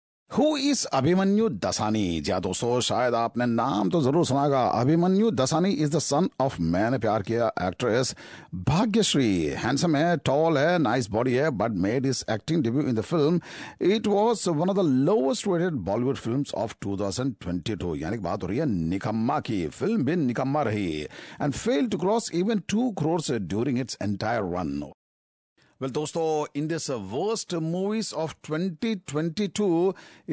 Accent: Indian